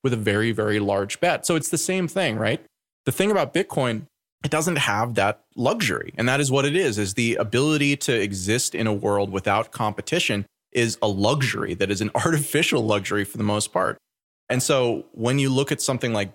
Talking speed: 210 wpm